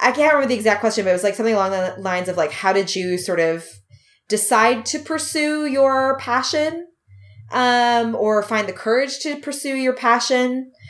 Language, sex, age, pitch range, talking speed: English, female, 20-39, 165-220 Hz, 195 wpm